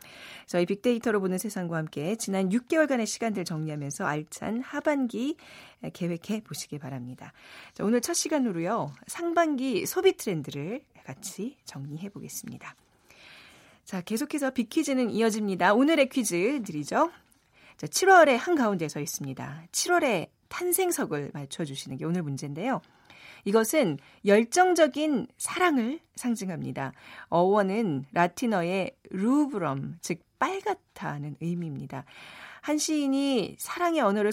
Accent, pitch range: native, 155-260 Hz